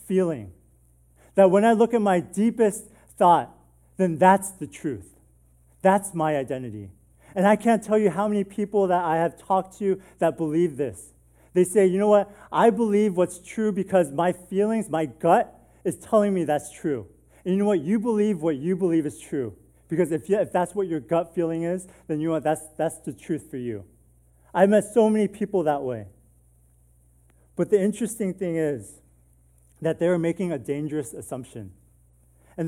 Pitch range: 120-190 Hz